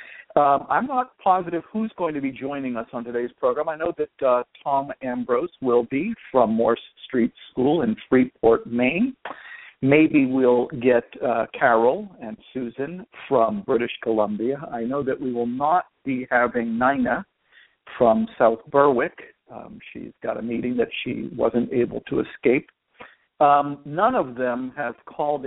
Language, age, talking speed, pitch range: English, 60-79, 160 wpm, 125-160 Hz